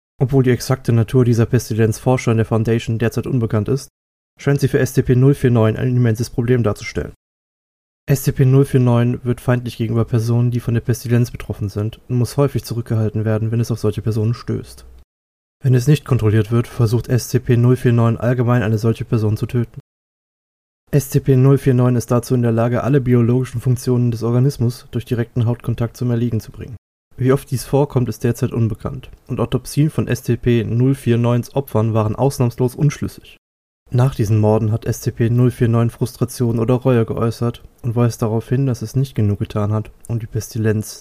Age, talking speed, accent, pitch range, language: 20-39, 160 wpm, German, 115-130 Hz, German